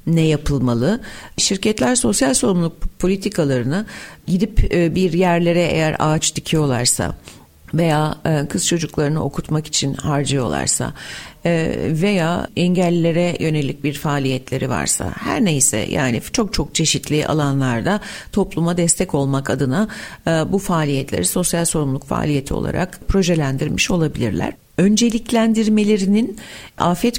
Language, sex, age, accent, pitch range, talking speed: Turkish, female, 60-79, native, 145-180 Hz, 100 wpm